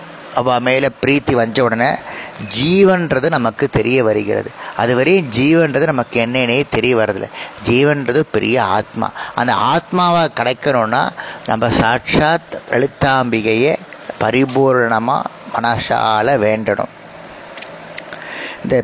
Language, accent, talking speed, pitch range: Tamil, native, 85 wpm, 120-150 Hz